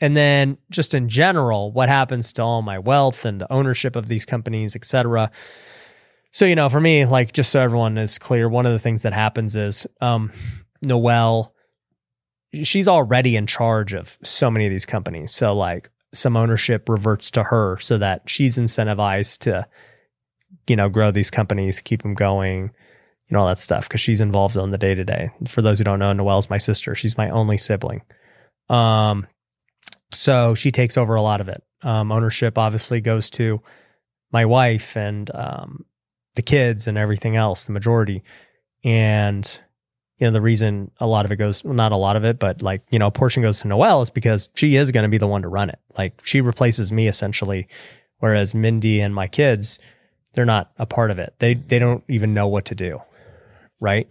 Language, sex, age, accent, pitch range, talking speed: English, male, 20-39, American, 105-125 Hz, 200 wpm